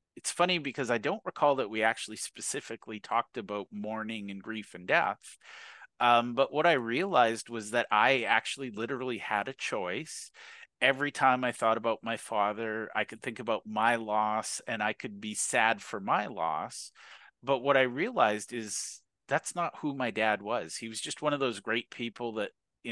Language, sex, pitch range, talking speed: English, male, 110-130 Hz, 190 wpm